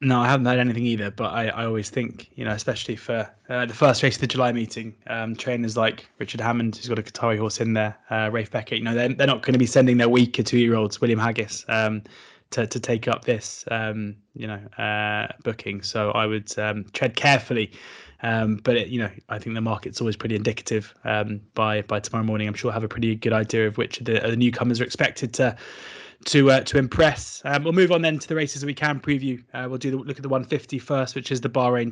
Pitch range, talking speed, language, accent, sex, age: 110-125 Hz, 245 wpm, English, British, male, 20-39